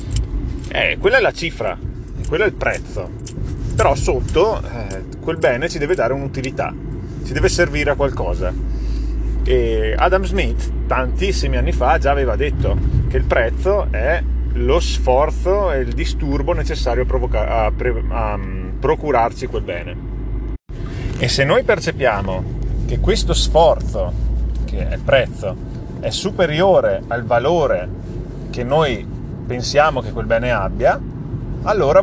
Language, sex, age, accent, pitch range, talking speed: Italian, male, 30-49, native, 90-140 Hz, 135 wpm